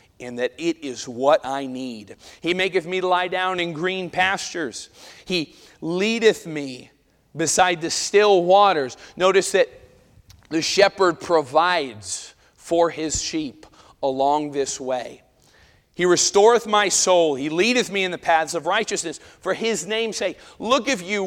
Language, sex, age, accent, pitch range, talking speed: English, male, 40-59, American, 165-225 Hz, 150 wpm